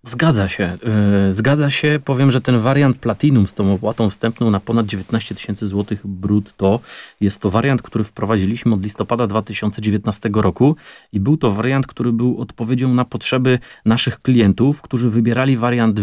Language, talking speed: Polish, 155 wpm